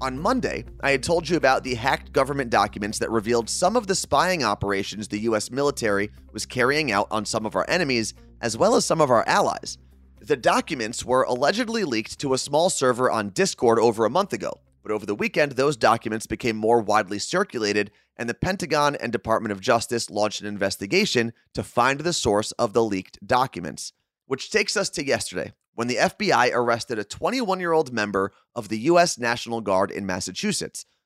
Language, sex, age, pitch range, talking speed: English, male, 30-49, 110-150 Hz, 190 wpm